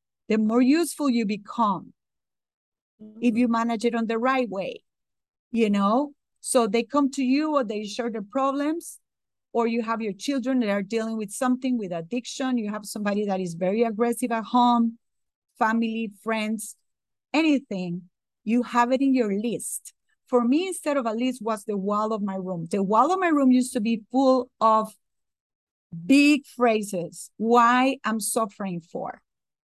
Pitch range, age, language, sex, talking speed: 220-275 Hz, 40-59, English, female, 170 wpm